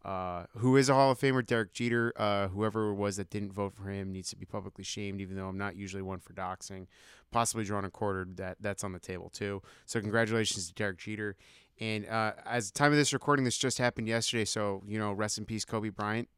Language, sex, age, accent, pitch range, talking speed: English, male, 30-49, American, 100-115 Hz, 240 wpm